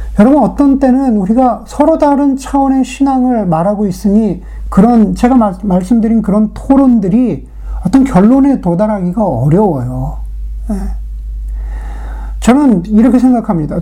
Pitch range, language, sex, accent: 140-225 Hz, Korean, male, native